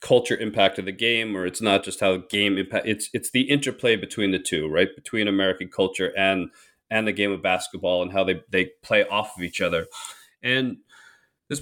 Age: 30-49